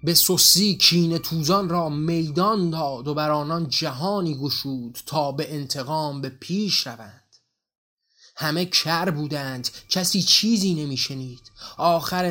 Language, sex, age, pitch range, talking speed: Persian, male, 30-49, 135-180 Hz, 120 wpm